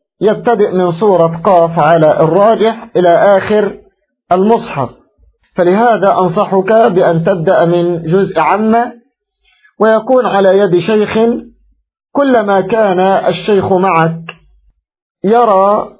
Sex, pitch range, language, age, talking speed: male, 180-220 Hz, Arabic, 50-69, 95 wpm